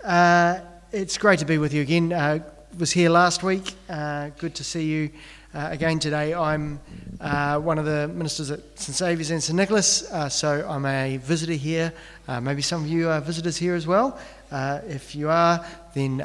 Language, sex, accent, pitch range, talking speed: English, male, Australian, 135-170 Hz, 200 wpm